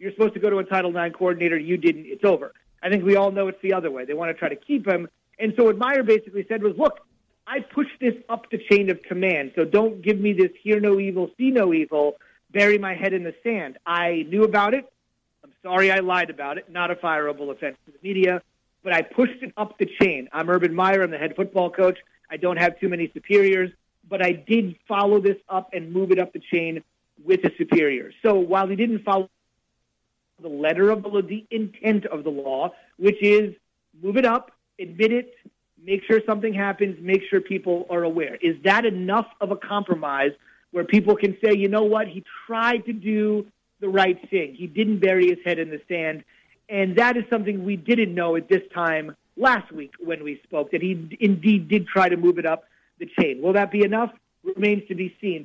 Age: 30-49